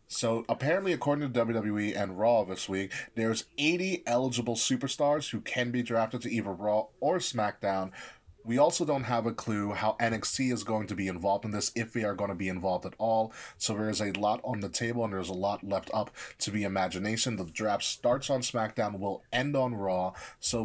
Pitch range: 100-130 Hz